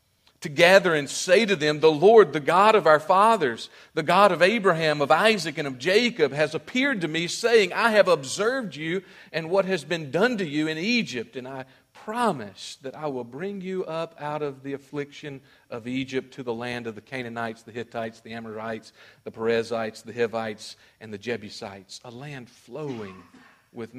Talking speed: 190 wpm